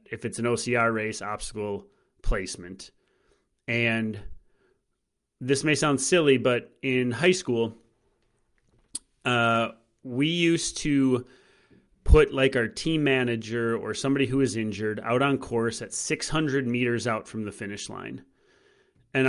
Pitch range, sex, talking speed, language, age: 115-140 Hz, male, 130 wpm, English, 30-49